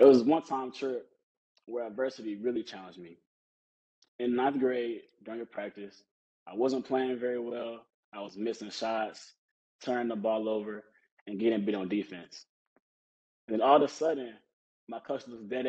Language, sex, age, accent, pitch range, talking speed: English, male, 20-39, American, 110-135 Hz, 165 wpm